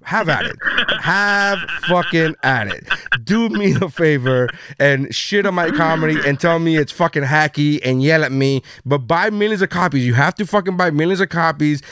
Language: English